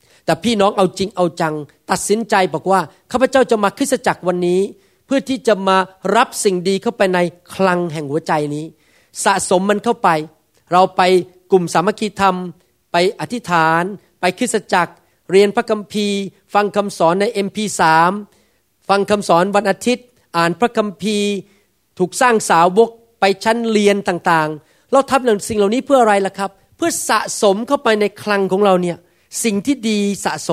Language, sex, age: Thai, male, 40-59